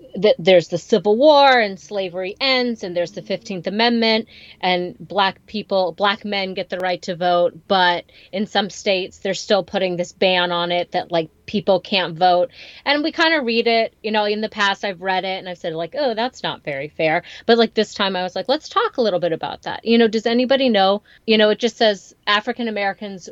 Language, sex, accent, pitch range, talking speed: English, female, American, 185-235 Hz, 225 wpm